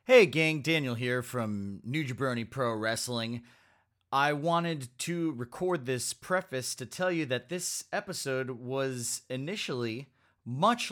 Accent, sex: American, male